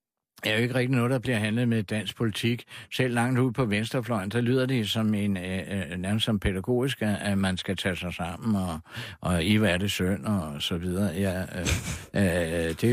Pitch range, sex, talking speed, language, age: 95-130 Hz, male, 205 wpm, Danish, 60-79